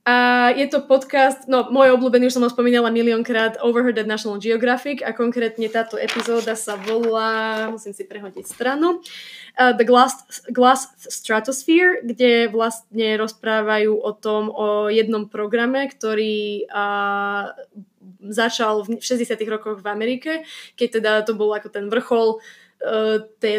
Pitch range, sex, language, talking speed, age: 215-245 Hz, female, Slovak, 140 wpm, 20-39